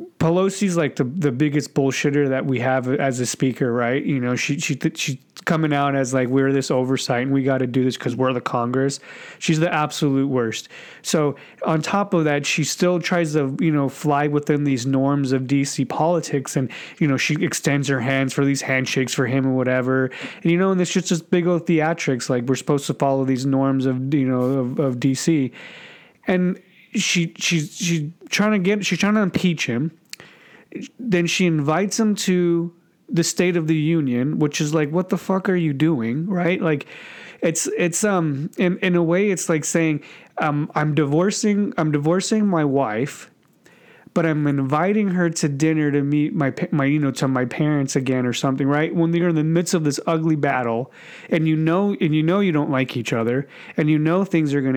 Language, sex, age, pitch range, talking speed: English, male, 30-49, 135-170 Hz, 205 wpm